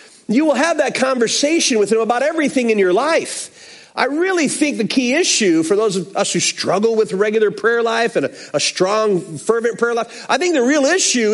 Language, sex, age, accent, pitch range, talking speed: English, male, 40-59, American, 215-310 Hz, 205 wpm